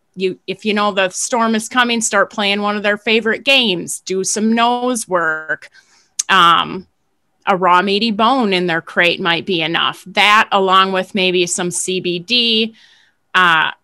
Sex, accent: female, American